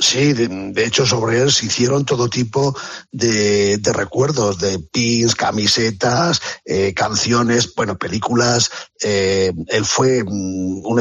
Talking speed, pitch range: 130 wpm, 110-130 Hz